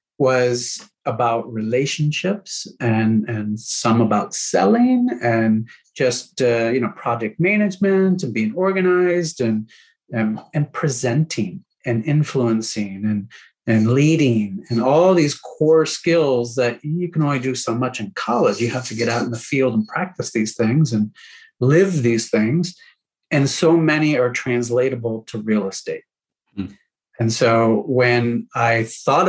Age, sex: 40-59, male